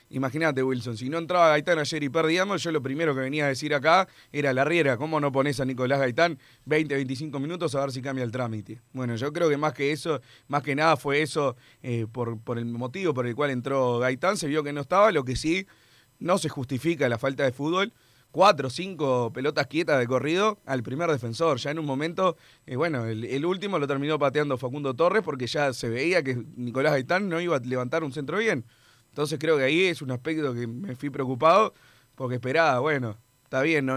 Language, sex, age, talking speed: Spanish, male, 30-49, 225 wpm